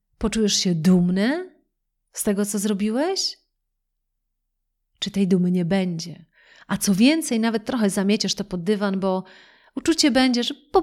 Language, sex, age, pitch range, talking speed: Polish, female, 40-59, 190-250 Hz, 145 wpm